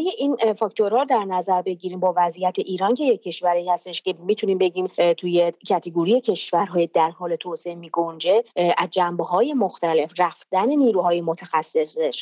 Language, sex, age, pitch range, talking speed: English, female, 30-49, 175-215 Hz, 135 wpm